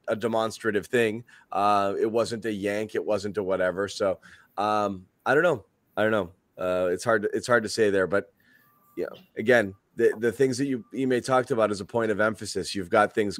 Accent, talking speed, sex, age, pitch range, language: American, 215 wpm, male, 30-49, 100-125 Hz, English